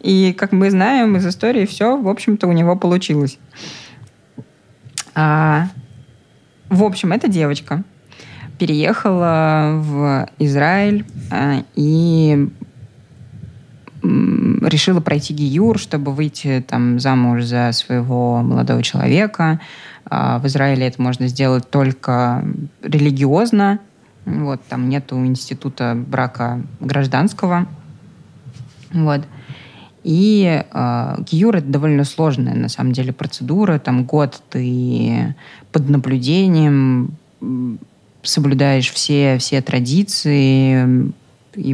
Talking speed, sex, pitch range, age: 95 wpm, female, 130-160 Hz, 20-39